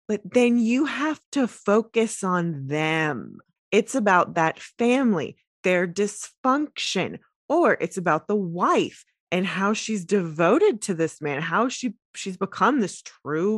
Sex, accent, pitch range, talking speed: female, American, 160-225 Hz, 140 wpm